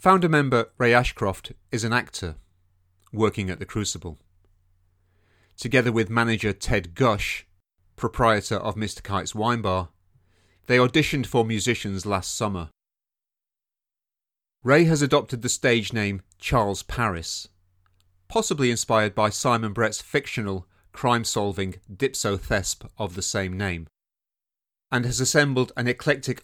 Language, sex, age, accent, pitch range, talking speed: English, male, 40-59, British, 95-120 Hz, 120 wpm